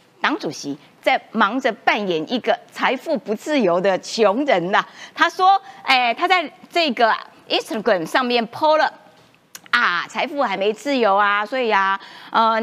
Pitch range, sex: 205-290 Hz, female